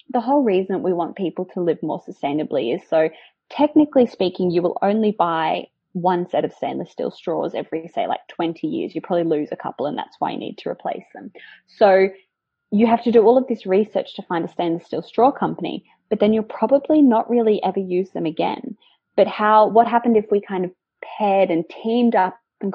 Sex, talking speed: female, 215 wpm